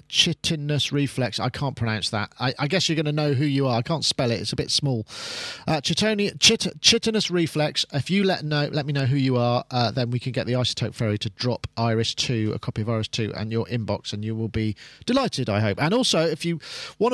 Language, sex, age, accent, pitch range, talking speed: English, male, 40-59, British, 125-165 Hz, 250 wpm